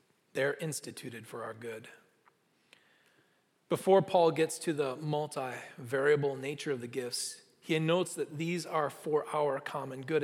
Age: 30-49